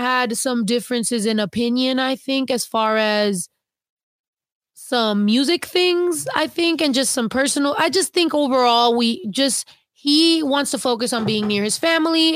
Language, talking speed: English, 165 wpm